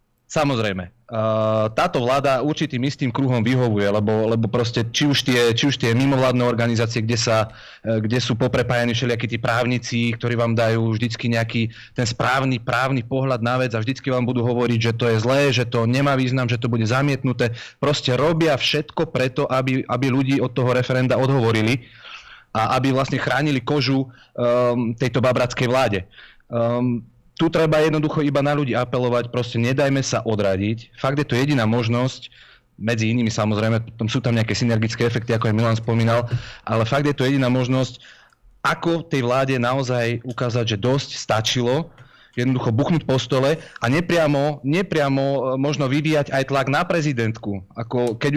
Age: 30-49